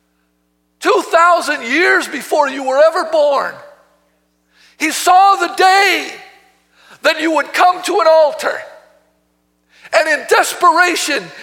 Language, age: English, 50-69